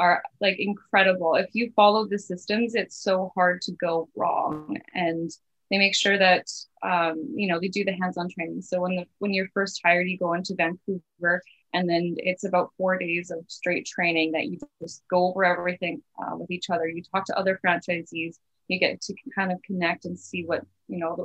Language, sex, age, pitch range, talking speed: English, female, 20-39, 165-190 Hz, 205 wpm